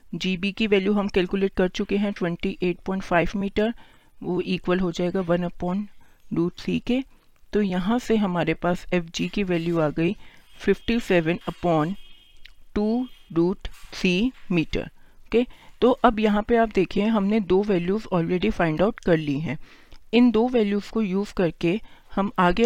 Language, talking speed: Hindi, 155 wpm